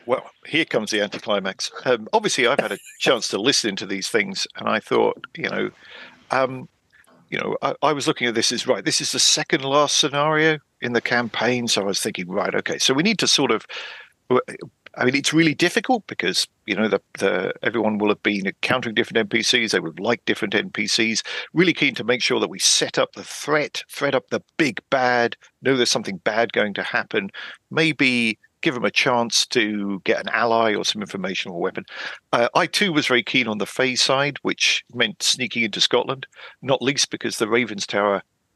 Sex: male